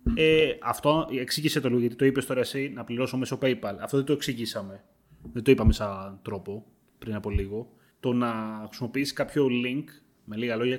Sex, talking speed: male, 190 wpm